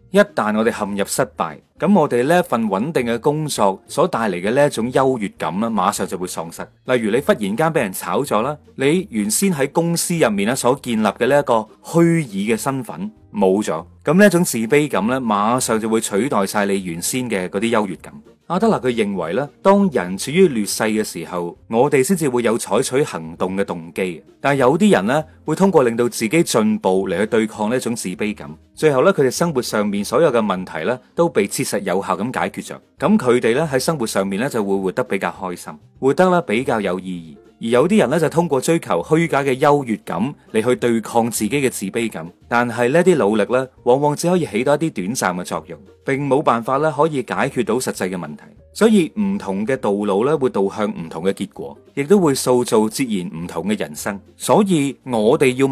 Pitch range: 105-165 Hz